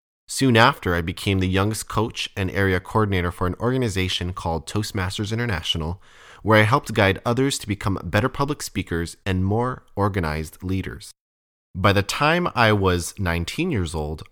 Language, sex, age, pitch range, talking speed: English, male, 20-39, 90-120 Hz, 160 wpm